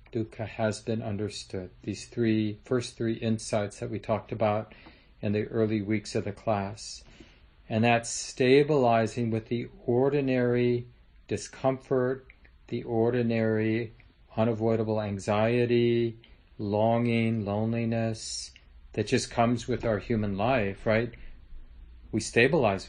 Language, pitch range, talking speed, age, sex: English, 95-120 Hz, 115 wpm, 40-59, male